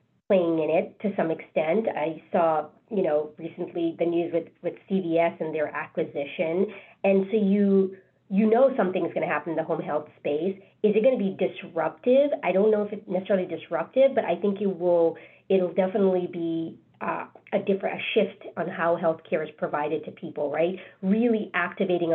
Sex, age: female, 40-59